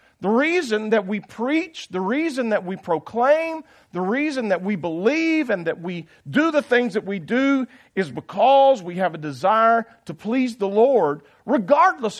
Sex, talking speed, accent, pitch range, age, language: male, 170 wpm, American, 155-250 Hz, 50-69, English